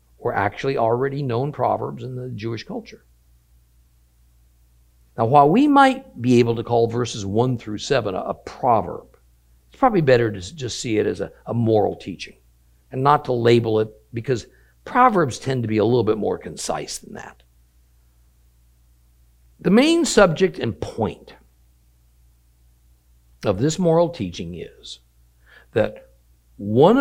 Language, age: English, 60-79